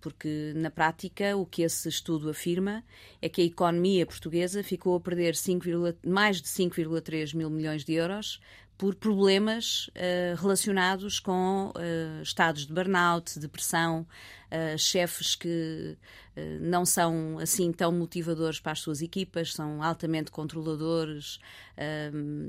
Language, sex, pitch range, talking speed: Portuguese, female, 160-190 Hz, 140 wpm